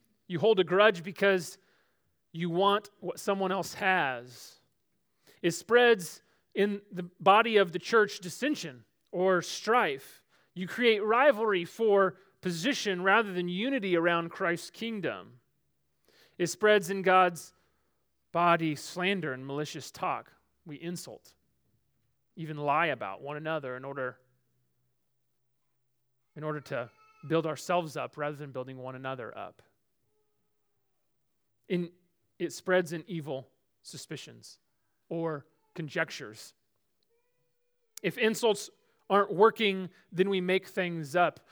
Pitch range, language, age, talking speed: 155-200 Hz, English, 30-49, 115 wpm